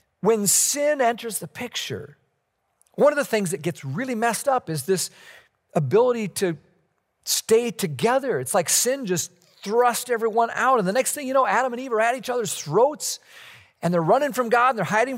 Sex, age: male, 40-59